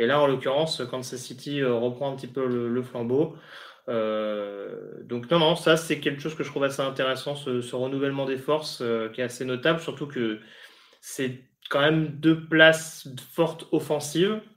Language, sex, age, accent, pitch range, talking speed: French, male, 20-39, French, 125-145 Hz, 185 wpm